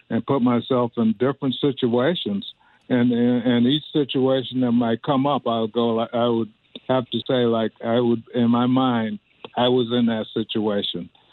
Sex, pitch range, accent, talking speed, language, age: male, 120-140 Hz, American, 170 wpm, English, 60-79